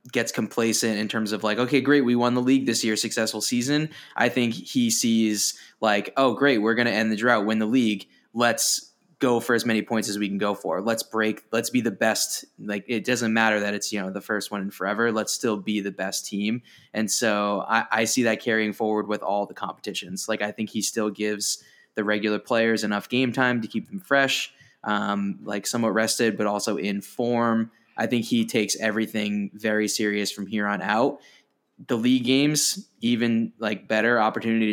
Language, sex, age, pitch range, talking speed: English, male, 20-39, 105-115 Hz, 210 wpm